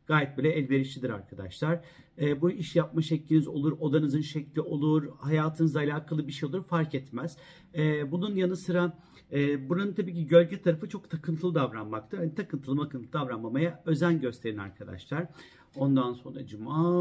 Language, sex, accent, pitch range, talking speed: Turkish, male, native, 130-170 Hz, 150 wpm